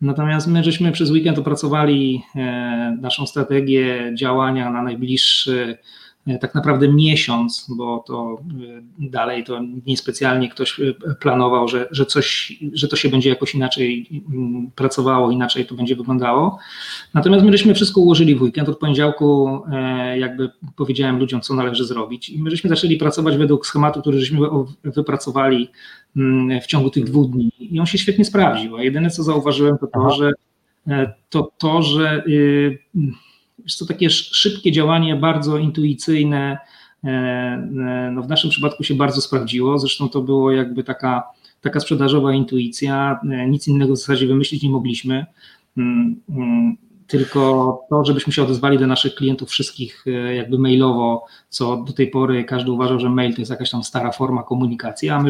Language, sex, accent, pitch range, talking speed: Polish, male, native, 125-150 Hz, 145 wpm